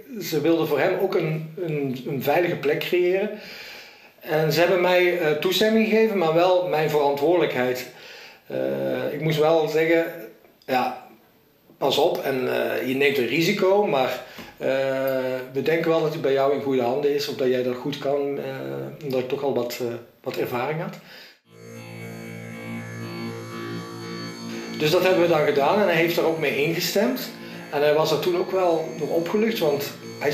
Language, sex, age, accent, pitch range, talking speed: Dutch, male, 50-69, Dutch, 130-175 Hz, 175 wpm